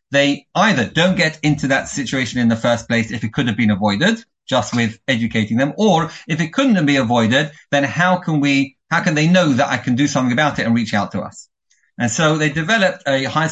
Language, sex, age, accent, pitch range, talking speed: English, male, 30-49, British, 115-155 Hz, 235 wpm